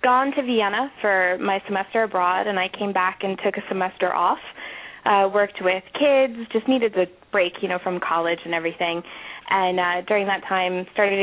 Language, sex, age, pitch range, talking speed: English, female, 20-39, 175-200 Hz, 190 wpm